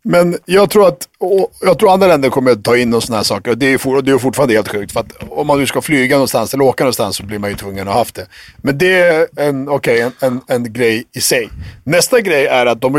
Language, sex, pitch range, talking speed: English, male, 115-165 Hz, 275 wpm